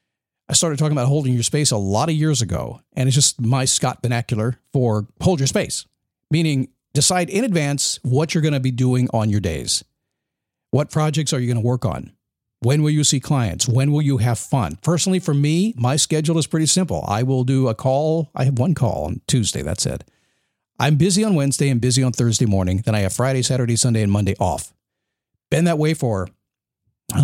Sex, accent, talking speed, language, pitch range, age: male, American, 215 wpm, English, 120-160 Hz, 50-69